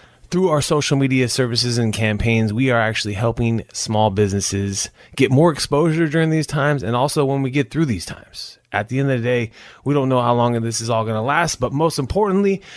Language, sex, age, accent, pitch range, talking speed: English, male, 30-49, American, 105-135 Hz, 220 wpm